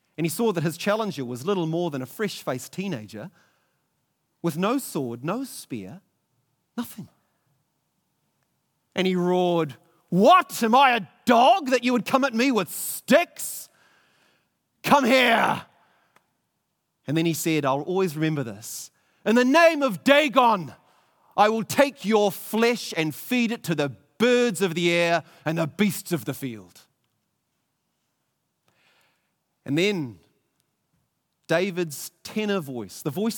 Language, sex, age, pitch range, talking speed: English, male, 40-59, 150-220 Hz, 140 wpm